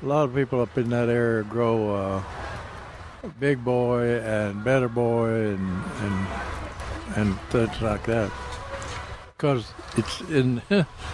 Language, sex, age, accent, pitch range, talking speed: English, male, 60-79, American, 95-135 Hz, 130 wpm